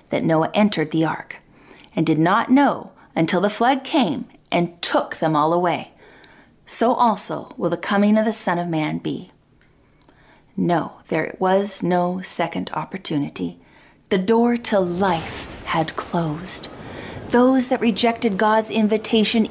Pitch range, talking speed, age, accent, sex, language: 195-255 Hz, 140 wpm, 30-49, American, female, English